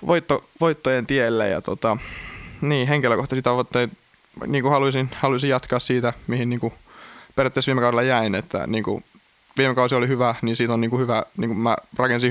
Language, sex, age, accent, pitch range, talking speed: Finnish, male, 20-39, native, 110-125 Hz, 175 wpm